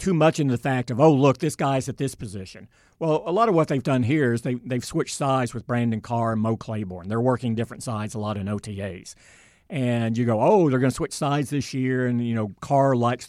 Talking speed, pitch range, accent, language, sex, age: 255 wpm, 110-135 Hz, American, English, male, 50-69